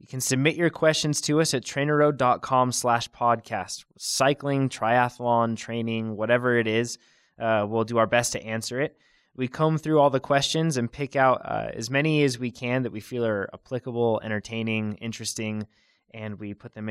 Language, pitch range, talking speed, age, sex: English, 110-135 Hz, 180 wpm, 20-39, male